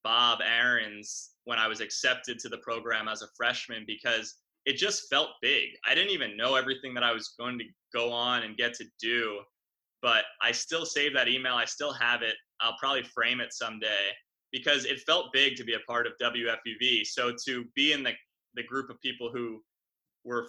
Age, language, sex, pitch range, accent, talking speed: 20-39, English, male, 115-130 Hz, American, 200 wpm